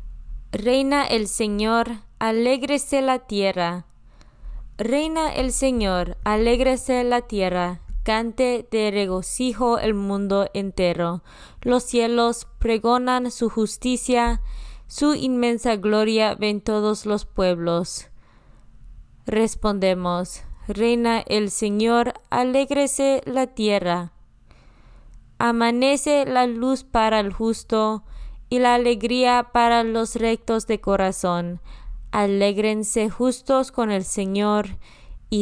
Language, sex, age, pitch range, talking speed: Spanish, female, 20-39, 195-245 Hz, 95 wpm